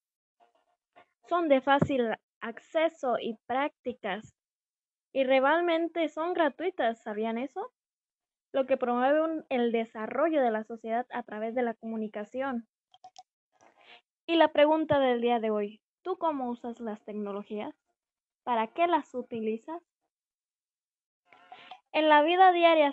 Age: 10-29